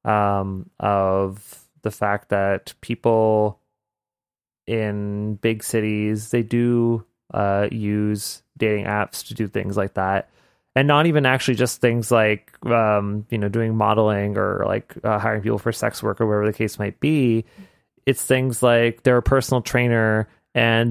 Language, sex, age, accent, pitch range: Japanese, male, 20-39, American, 105-120 Hz